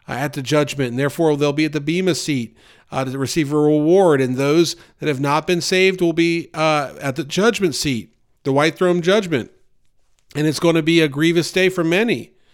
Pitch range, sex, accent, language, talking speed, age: 140-170 Hz, male, American, English, 215 wpm, 40-59